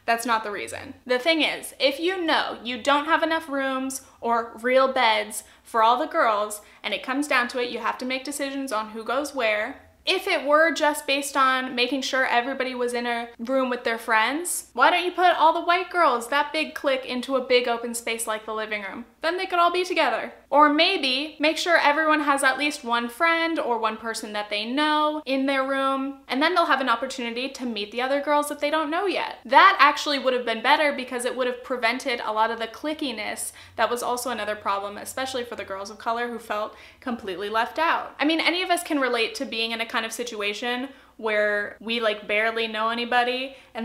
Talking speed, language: 230 wpm, English